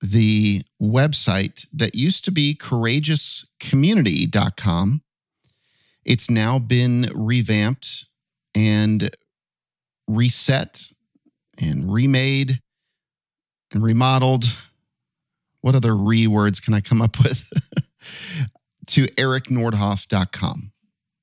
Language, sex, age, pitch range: English, male, 40-59, 110-145 Hz